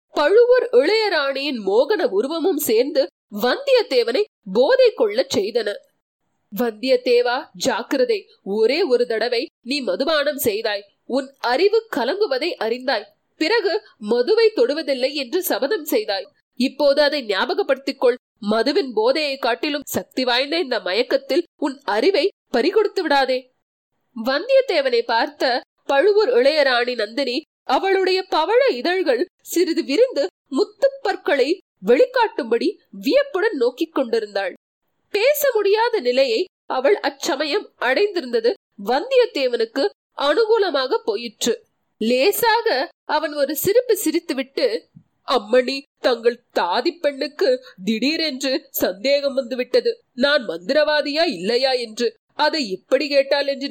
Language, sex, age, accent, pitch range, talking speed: Tamil, female, 30-49, native, 270-440 Hz, 95 wpm